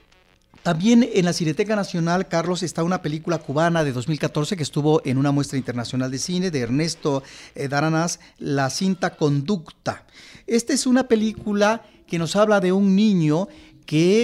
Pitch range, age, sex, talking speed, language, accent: 140-185 Hz, 40-59, male, 155 wpm, Spanish, Mexican